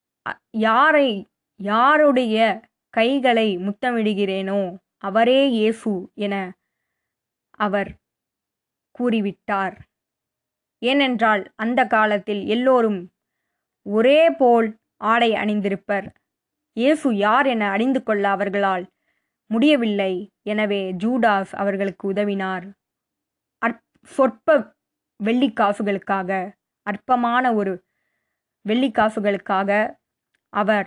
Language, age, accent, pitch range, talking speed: Tamil, 20-39, native, 200-245 Hz, 65 wpm